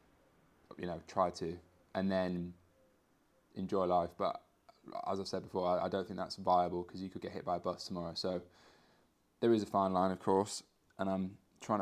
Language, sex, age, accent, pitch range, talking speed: English, male, 20-39, British, 95-105 Hz, 195 wpm